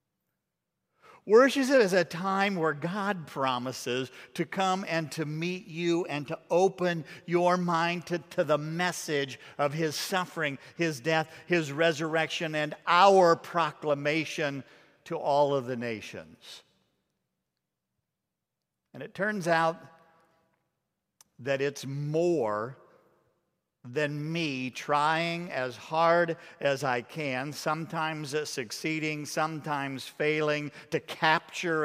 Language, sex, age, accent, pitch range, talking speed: English, male, 50-69, American, 150-185 Hz, 110 wpm